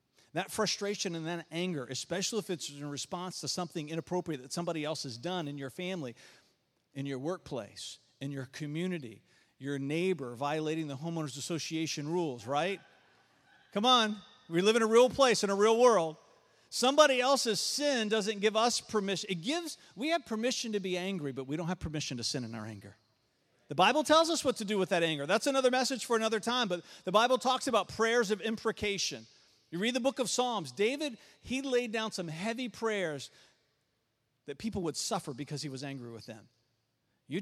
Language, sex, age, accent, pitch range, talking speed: English, male, 40-59, American, 150-235 Hz, 190 wpm